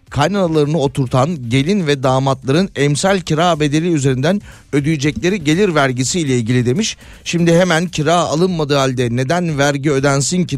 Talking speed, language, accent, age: 135 wpm, Turkish, native, 30-49